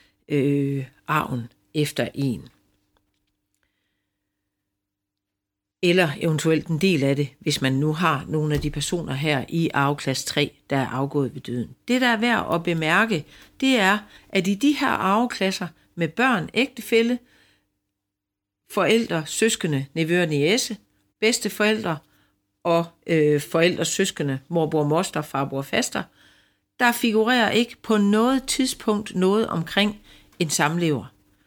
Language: Danish